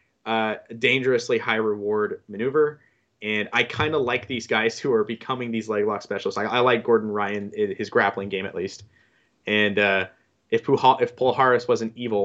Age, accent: 20-39, American